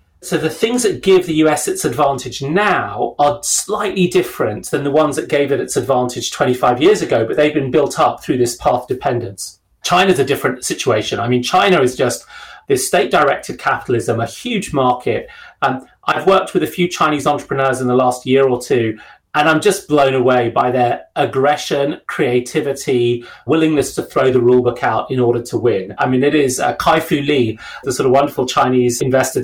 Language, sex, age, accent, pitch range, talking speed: English, male, 30-49, British, 125-155 Hz, 200 wpm